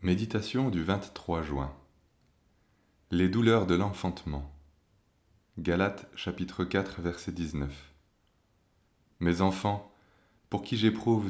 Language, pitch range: French, 85-105 Hz